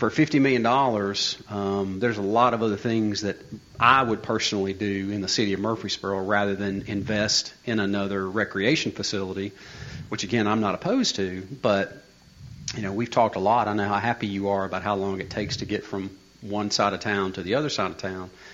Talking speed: 205 wpm